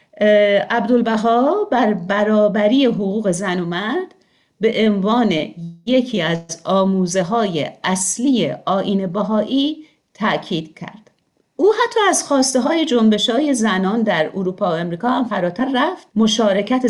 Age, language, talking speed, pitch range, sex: 50-69, Persian, 115 wpm, 185-255 Hz, female